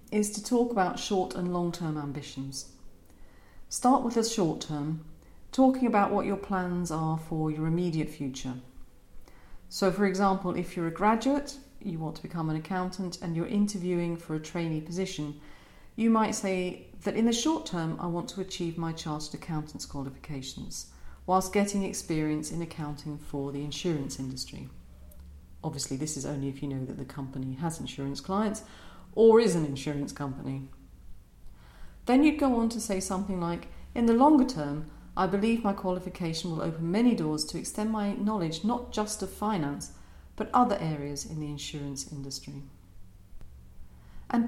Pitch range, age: 140-200 Hz, 40-59